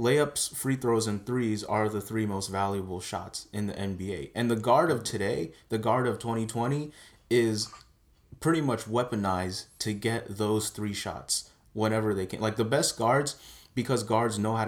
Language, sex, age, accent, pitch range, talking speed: English, male, 30-49, American, 100-115 Hz, 175 wpm